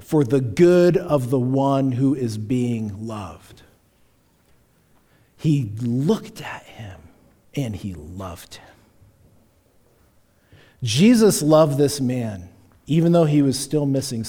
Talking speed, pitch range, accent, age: 120 wpm, 110-175 Hz, American, 50-69